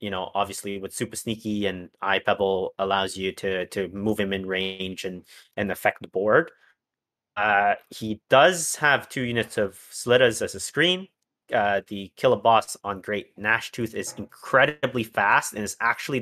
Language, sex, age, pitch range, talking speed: English, male, 30-49, 95-115 Hz, 175 wpm